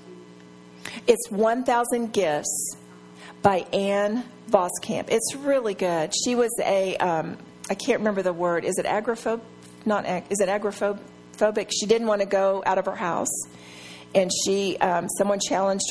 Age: 40-59